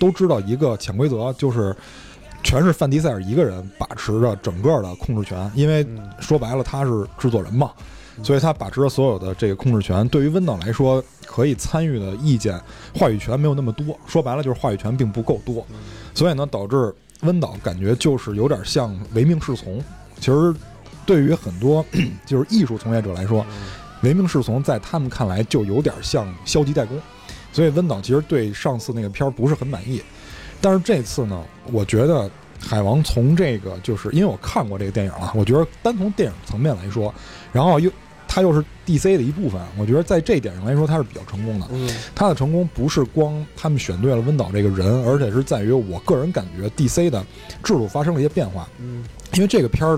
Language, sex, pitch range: Chinese, male, 110-150 Hz